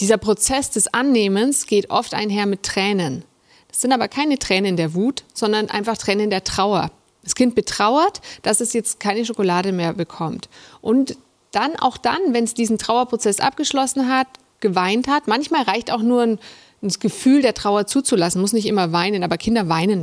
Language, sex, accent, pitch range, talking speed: German, female, German, 190-235 Hz, 175 wpm